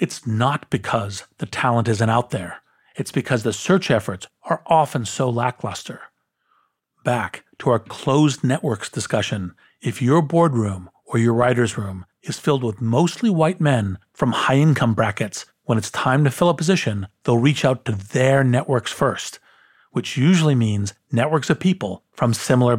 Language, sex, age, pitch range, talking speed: English, male, 40-59, 110-150 Hz, 160 wpm